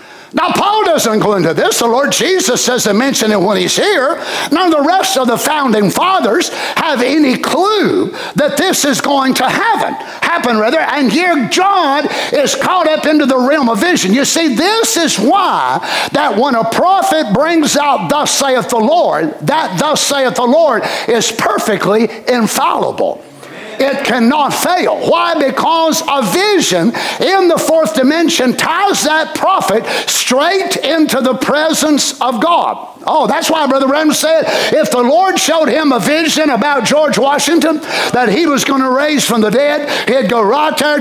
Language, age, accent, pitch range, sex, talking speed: English, 60-79, American, 255-330 Hz, male, 170 wpm